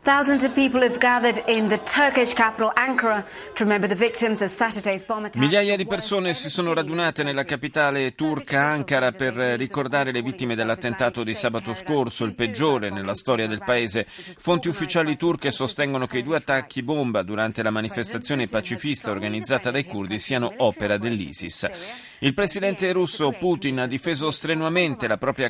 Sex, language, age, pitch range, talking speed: male, Italian, 40-59, 115-155 Hz, 120 wpm